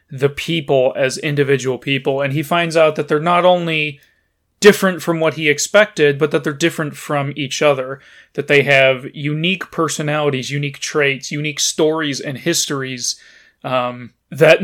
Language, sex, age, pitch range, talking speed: English, male, 30-49, 140-170 Hz, 155 wpm